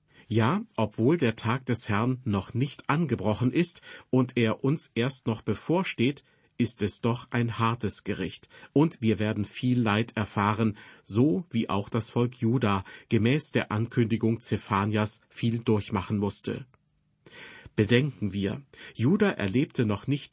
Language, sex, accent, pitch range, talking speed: German, male, German, 105-130 Hz, 140 wpm